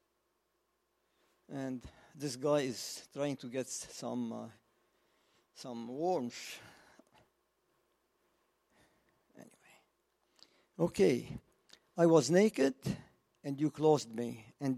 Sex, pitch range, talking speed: male, 135-175 Hz, 85 wpm